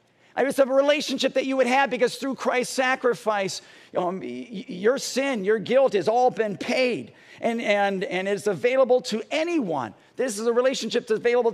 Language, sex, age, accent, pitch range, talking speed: English, male, 50-69, American, 195-255 Hz, 185 wpm